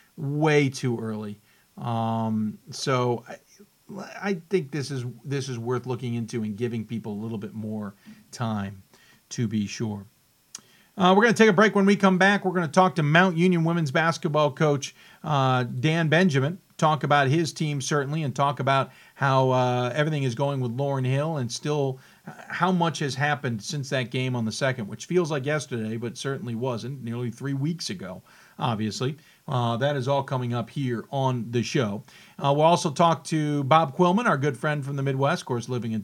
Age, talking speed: 50-69, 190 wpm